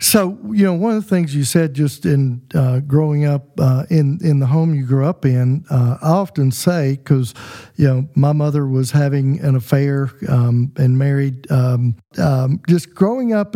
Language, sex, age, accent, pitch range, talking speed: English, male, 50-69, American, 130-155 Hz, 195 wpm